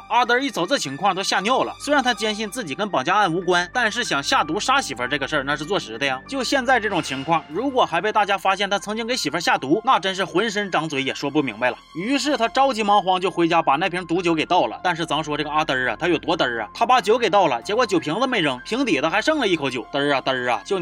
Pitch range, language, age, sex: 165-230 Hz, Chinese, 20-39, male